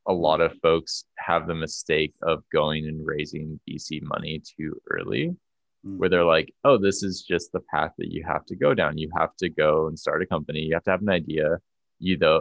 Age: 20-39